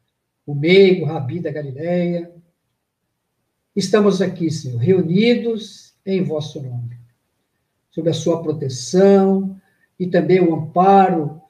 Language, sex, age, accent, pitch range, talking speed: Portuguese, male, 60-79, Brazilian, 140-185 Hz, 110 wpm